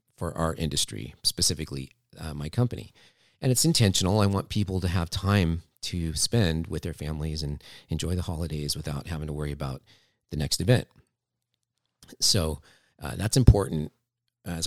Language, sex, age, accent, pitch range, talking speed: English, male, 40-59, American, 80-100 Hz, 155 wpm